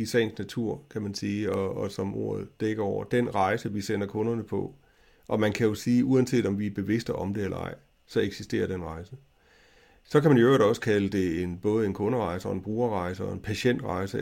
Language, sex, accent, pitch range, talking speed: Danish, male, native, 100-120 Hz, 225 wpm